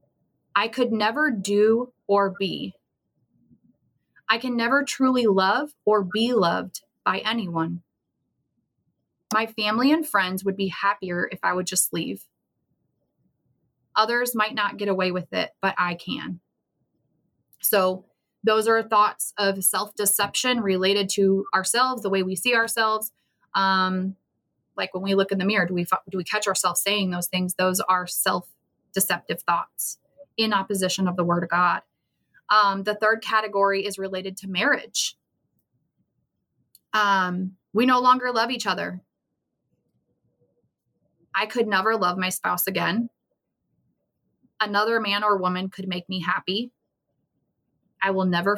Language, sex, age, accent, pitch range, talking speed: English, female, 20-39, American, 185-220 Hz, 140 wpm